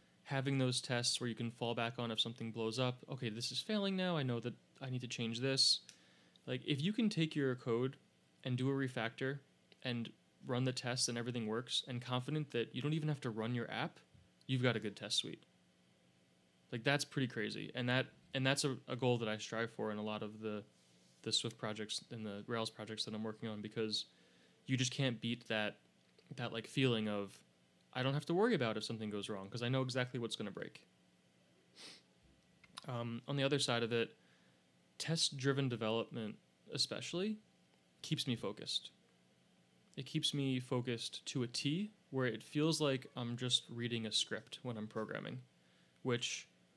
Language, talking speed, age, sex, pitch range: English, 195 wpm, 20-39, male, 110-130 Hz